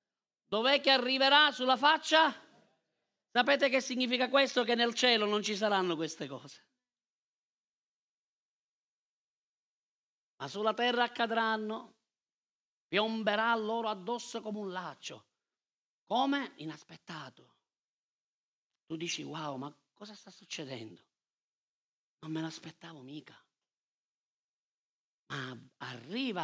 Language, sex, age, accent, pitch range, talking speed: Italian, male, 40-59, native, 180-270 Hz, 95 wpm